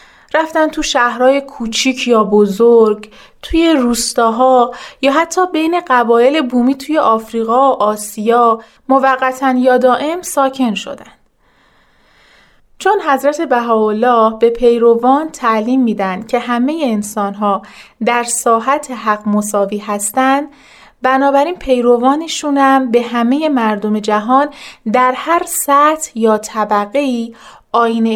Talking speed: 110 wpm